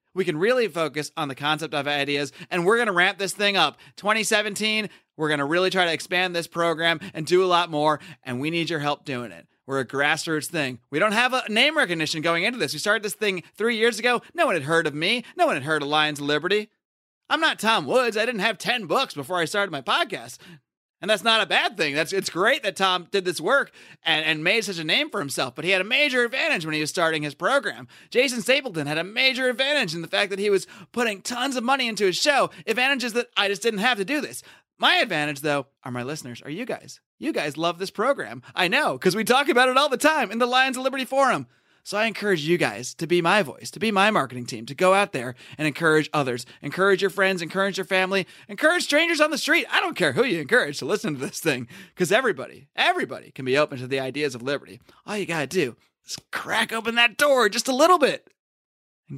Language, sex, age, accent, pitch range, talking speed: English, male, 30-49, American, 150-220 Hz, 250 wpm